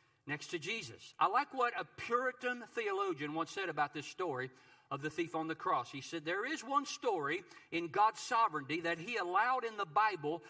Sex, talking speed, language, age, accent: male, 200 wpm, English, 50-69, American